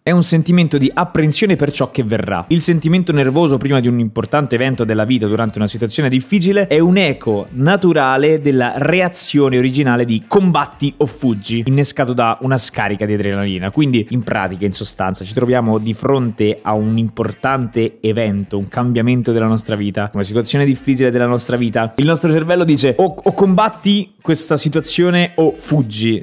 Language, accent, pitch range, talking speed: Italian, native, 110-155 Hz, 170 wpm